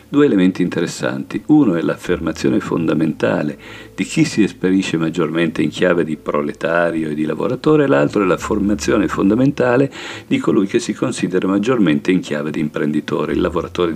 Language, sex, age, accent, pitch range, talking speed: Italian, male, 50-69, native, 80-105 Hz, 155 wpm